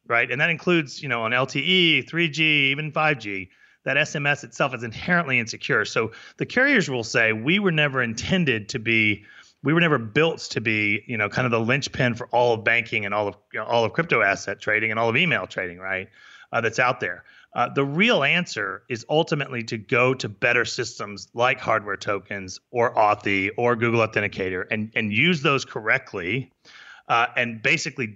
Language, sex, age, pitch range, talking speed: English, male, 30-49, 110-145 Hz, 190 wpm